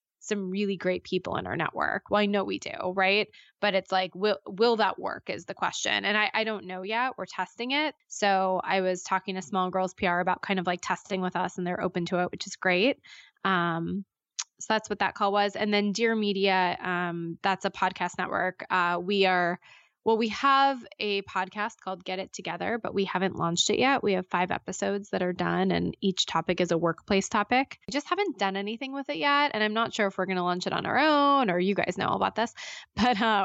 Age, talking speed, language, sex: 20-39, 235 wpm, English, female